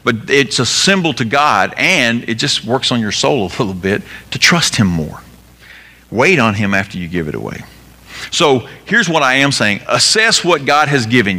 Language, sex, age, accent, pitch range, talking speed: English, male, 50-69, American, 95-145 Hz, 205 wpm